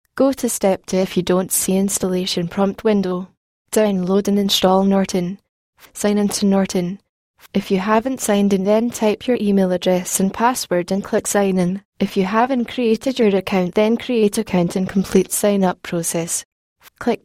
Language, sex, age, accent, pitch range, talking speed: English, female, 10-29, British, 185-215 Hz, 175 wpm